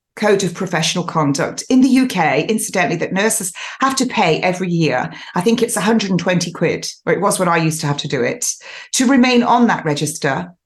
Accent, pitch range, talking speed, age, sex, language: British, 170-245 Hz, 205 wpm, 40-59, female, English